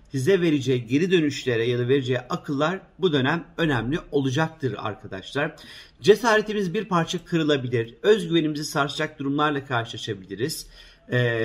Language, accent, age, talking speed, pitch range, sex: Turkish, native, 50-69, 115 wpm, 125-165 Hz, male